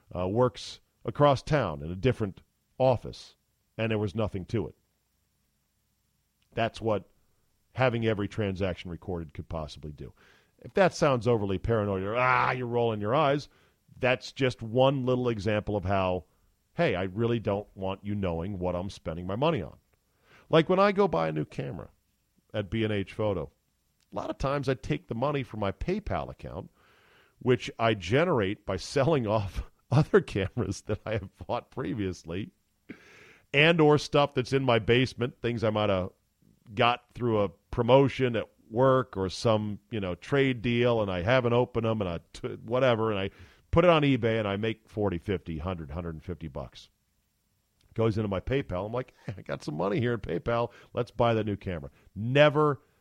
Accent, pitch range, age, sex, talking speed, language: American, 95-125 Hz, 40-59, male, 175 wpm, English